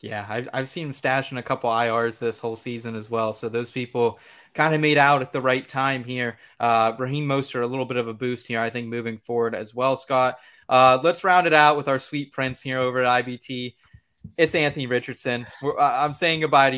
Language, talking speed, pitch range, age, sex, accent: English, 230 wpm, 125-150 Hz, 20-39, male, American